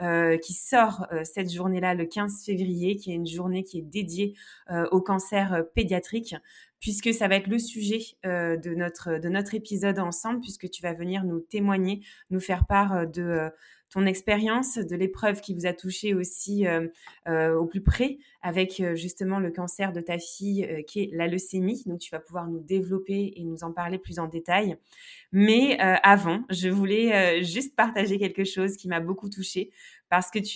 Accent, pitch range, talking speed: French, 175-215 Hz, 200 wpm